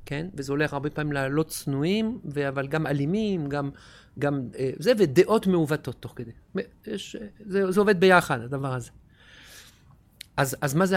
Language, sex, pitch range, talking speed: Hebrew, male, 135-175 Hz, 155 wpm